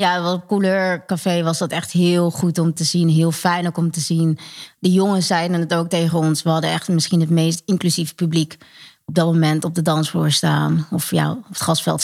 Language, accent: Dutch, Dutch